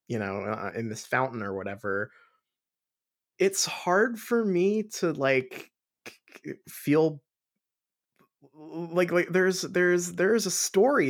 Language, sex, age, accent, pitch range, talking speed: English, male, 20-39, American, 105-150 Hz, 120 wpm